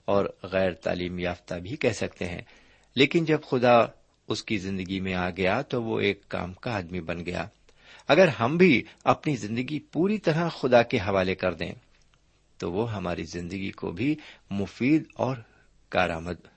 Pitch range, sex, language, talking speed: 95-130 Hz, male, Urdu, 165 wpm